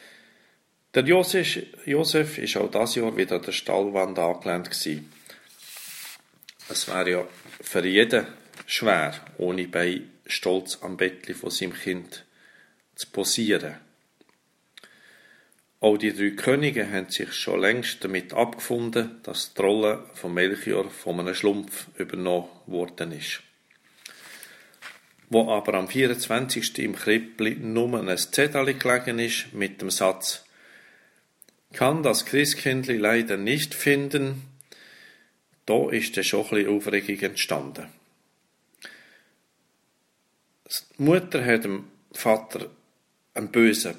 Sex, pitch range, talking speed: male, 95-125 Hz, 110 wpm